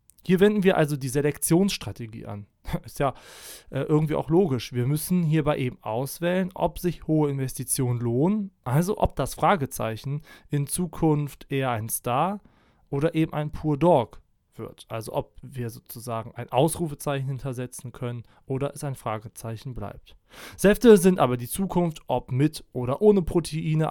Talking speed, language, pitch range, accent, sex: 155 wpm, German, 125-165 Hz, German, male